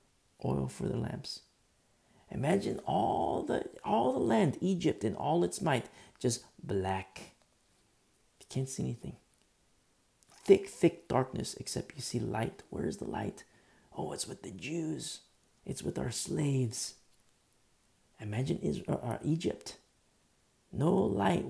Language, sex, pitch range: English, male, 105-130 Hz